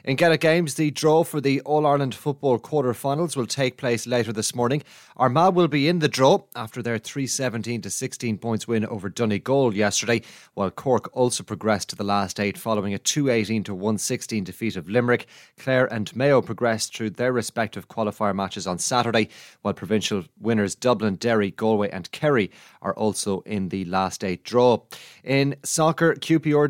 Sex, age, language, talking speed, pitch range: male, 30-49, English, 175 wpm, 110-135 Hz